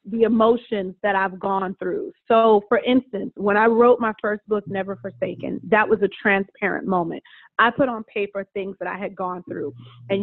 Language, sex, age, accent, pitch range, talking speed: English, female, 30-49, American, 195-230 Hz, 195 wpm